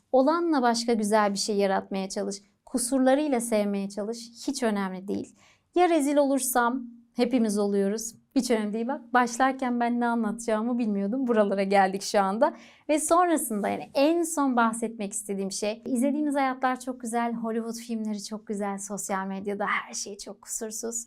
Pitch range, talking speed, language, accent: 215-265 Hz, 150 wpm, Turkish, native